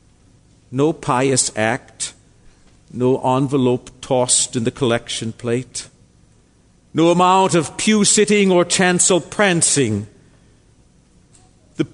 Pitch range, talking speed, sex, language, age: 125-190 Hz, 95 wpm, male, English, 50-69